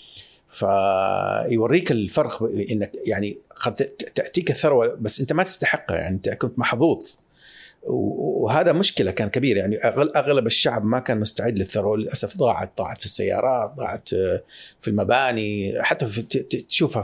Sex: male